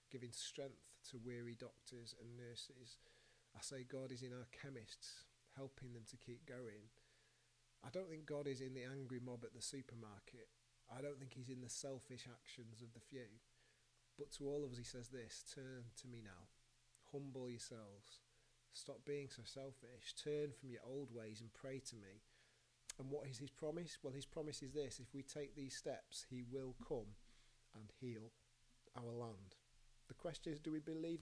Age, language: 30-49, English